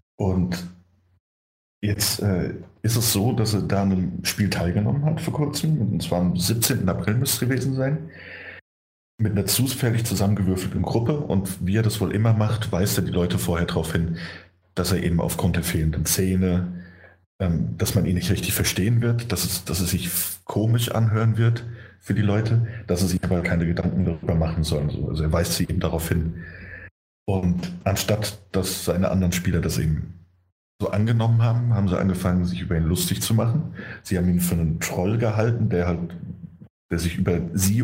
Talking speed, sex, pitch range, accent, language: 185 wpm, male, 85-105 Hz, German, German